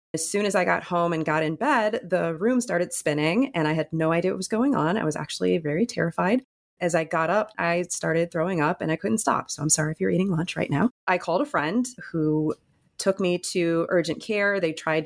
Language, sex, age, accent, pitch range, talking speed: English, female, 30-49, American, 160-195 Hz, 245 wpm